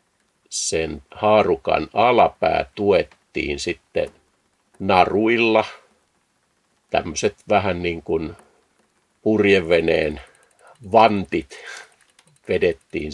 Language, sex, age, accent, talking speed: Finnish, male, 50-69, native, 60 wpm